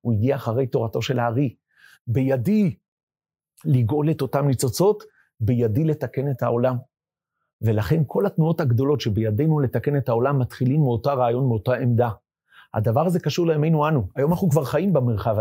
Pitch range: 125-160 Hz